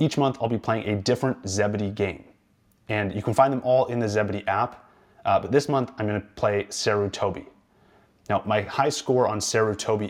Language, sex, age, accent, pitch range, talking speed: English, male, 30-49, American, 110-135 Hz, 215 wpm